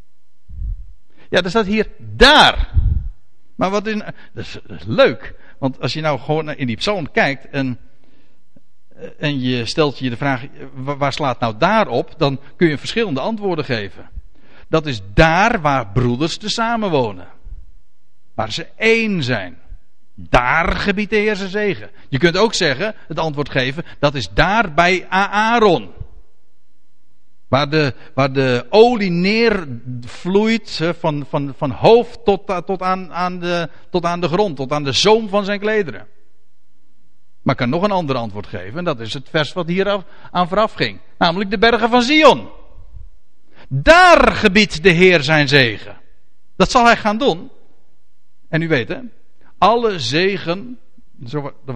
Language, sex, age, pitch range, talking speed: Dutch, male, 60-79, 130-205 Hz, 160 wpm